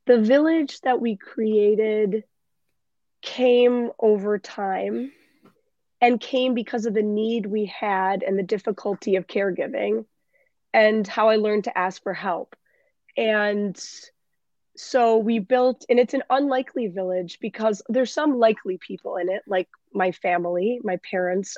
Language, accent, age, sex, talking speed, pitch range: English, American, 20-39, female, 140 wpm, 185-230 Hz